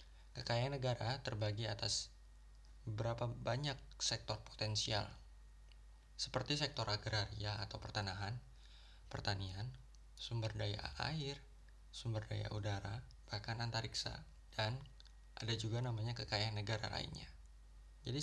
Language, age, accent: Indonesian, 20-39, native